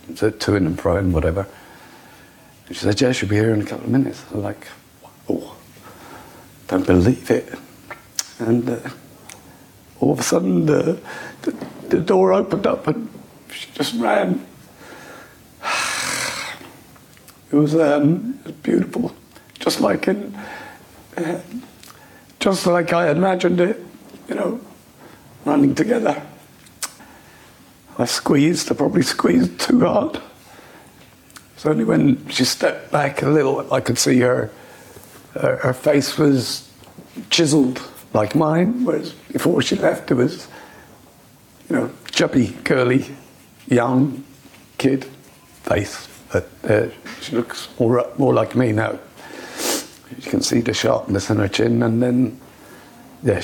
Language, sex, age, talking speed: English, male, 60-79, 130 wpm